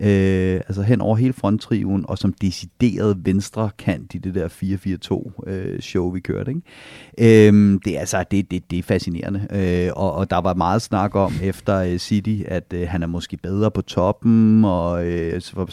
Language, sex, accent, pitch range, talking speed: Danish, male, native, 90-105 Hz, 185 wpm